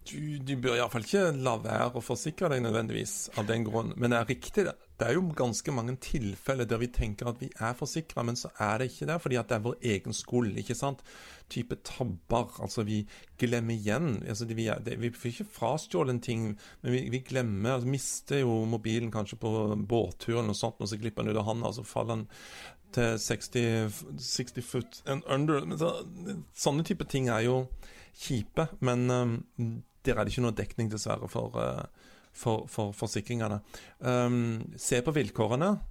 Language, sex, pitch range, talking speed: English, male, 110-130 Hz, 195 wpm